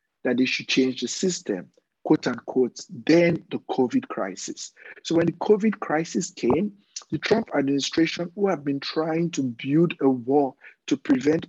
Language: English